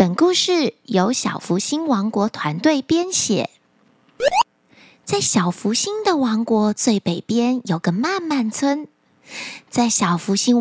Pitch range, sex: 205-335 Hz, female